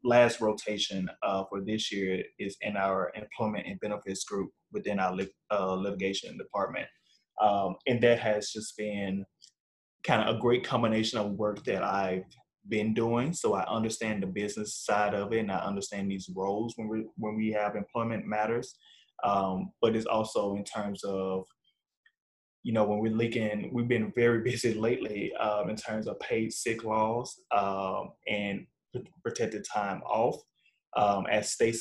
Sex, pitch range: male, 100-115 Hz